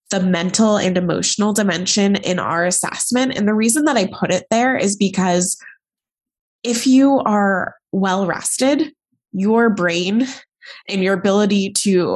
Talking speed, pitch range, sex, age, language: 145 wpm, 175-220 Hz, female, 20-39, English